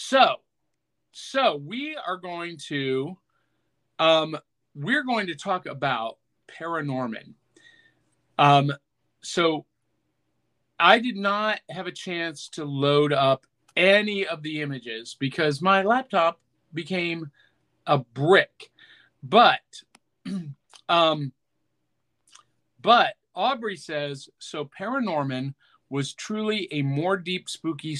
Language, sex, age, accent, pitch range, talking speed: English, male, 40-59, American, 145-195 Hz, 100 wpm